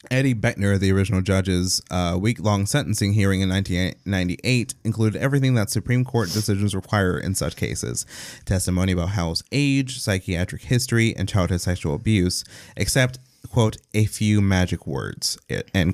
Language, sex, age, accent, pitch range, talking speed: English, male, 30-49, American, 90-115 Hz, 145 wpm